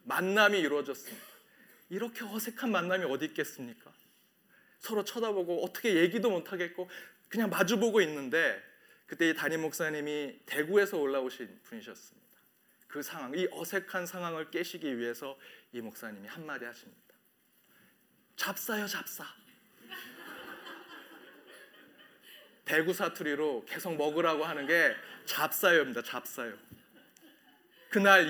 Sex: male